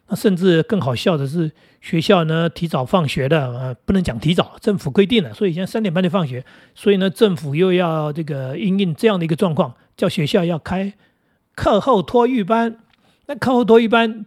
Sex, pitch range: male, 155-205 Hz